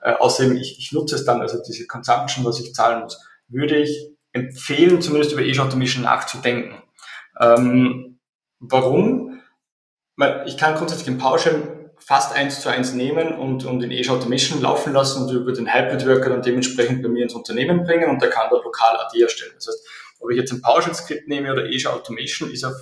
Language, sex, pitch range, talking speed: German, male, 125-150 Hz, 190 wpm